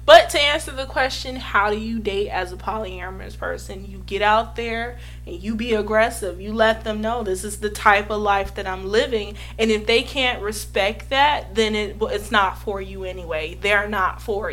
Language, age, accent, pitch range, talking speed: English, 20-39, American, 185-230 Hz, 205 wpm